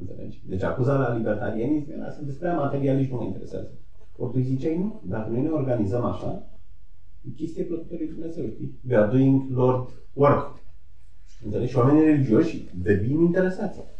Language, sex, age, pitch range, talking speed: Romanian, male, 40-59, 90-140 Hz, 135 wpm